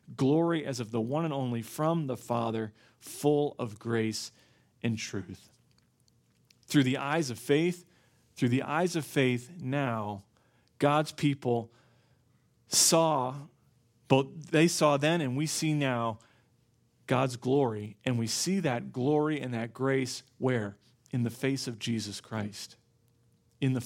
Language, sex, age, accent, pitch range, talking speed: English, male, 40-59, American, 120-145 Hz, 140 wpm